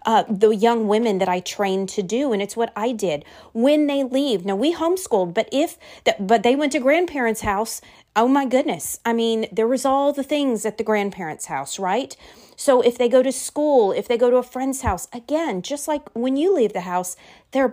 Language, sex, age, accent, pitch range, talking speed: English, female, 30-49, American, 190-245 Hz, 215 wpm